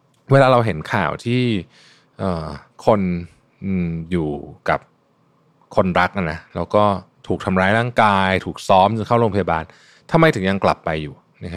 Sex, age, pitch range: male, 20-39, 85-115 Hz